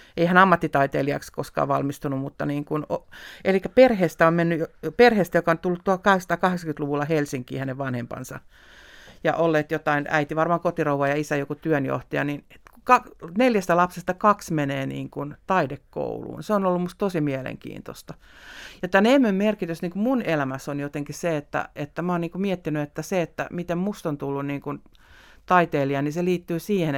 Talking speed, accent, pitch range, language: 165 wpm, native, 145-185 Hz, Finnish